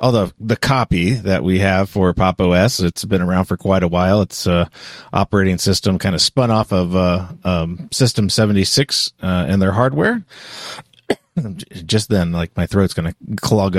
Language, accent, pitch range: English, American, 95-125 Hz